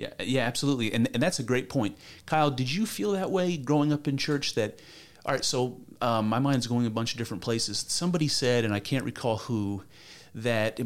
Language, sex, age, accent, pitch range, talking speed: English, male, 30-49, American, 115-140 Hz, 225 wpm